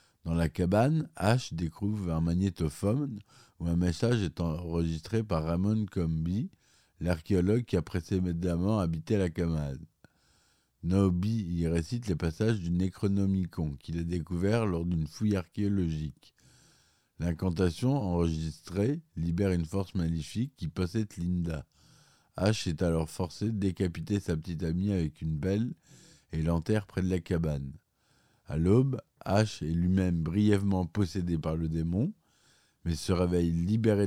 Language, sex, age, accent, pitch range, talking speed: French, male, 50-69, French, 85-105 Hz, 135 wpm